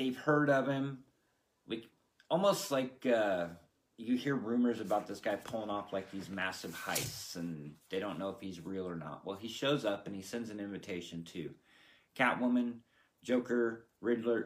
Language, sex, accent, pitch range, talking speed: English, male, American, 105-135 Hz, 175 wpm